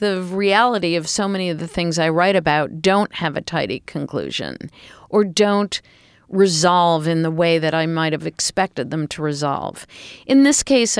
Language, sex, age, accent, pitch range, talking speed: English, female, 40-59, American, 150-190 Hz, 180 wpm